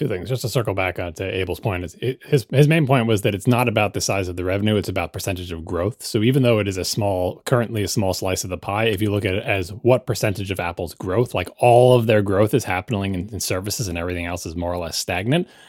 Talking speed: 275 wpm